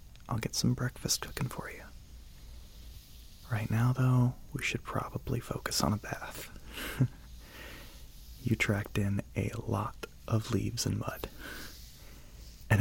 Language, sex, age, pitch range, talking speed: English, male, 30-49, 75-115 Hz, 125 wpm